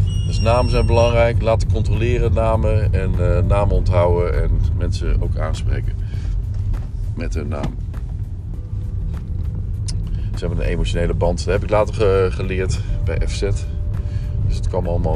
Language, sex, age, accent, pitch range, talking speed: German, male, 40-59, Dutch, 90-105 Hz, 140 wpm